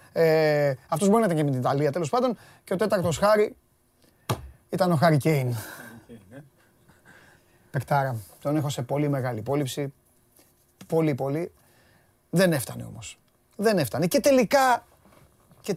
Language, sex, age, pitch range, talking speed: Greek, male, 30-49, 140-205 Hz, 135 wpm